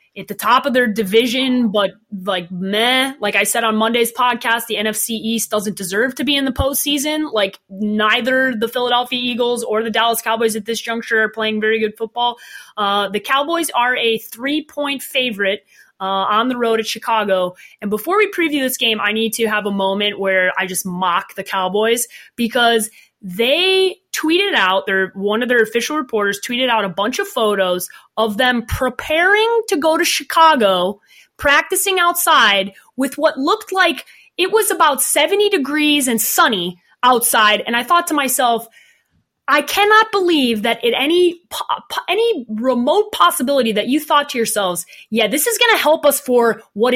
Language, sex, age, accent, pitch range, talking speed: English, female, 20-39, American, 215-290 Hz, 175 wpm